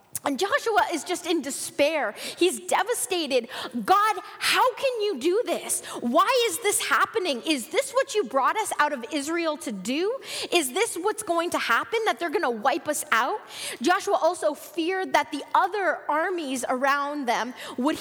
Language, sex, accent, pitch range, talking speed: English, female, American, 260-350 Hz, 175 wpm